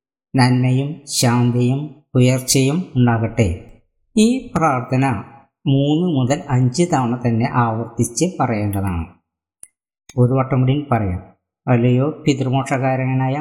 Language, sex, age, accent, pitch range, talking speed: Malayalam, female, 20-39, native, 120-140 Hz, 80 wpm